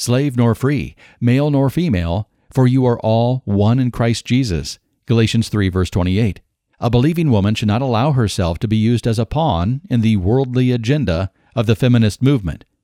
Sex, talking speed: male, 180 wpm